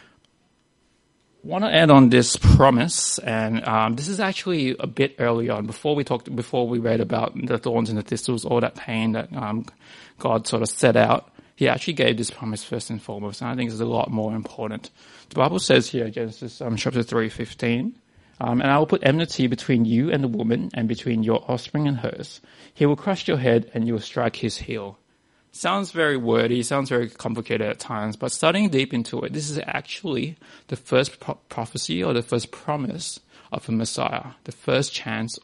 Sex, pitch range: male, 115-135 Hz